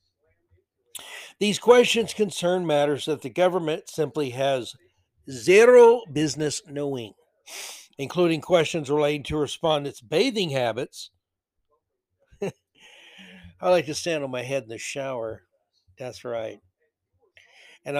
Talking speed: 105 wpm